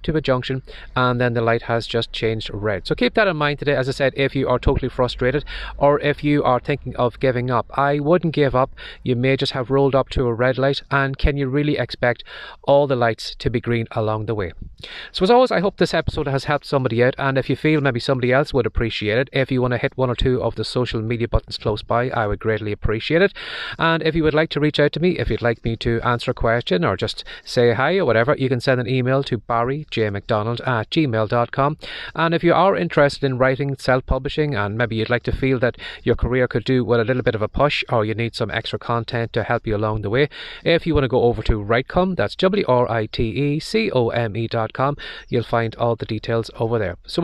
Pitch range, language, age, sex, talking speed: 115-145 Hz, English, 30-49, male, 255 wpm